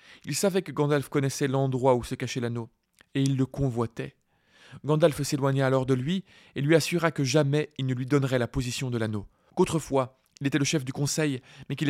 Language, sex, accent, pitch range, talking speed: French, male, French, 115-135 Hz, 205 wpm